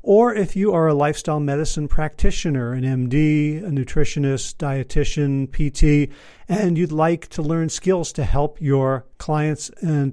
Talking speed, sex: 150 wpm, male